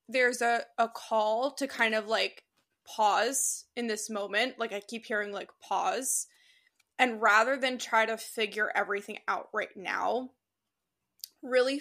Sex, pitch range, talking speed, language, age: female, 210-245 Hz, 145 wpm, English, 20-39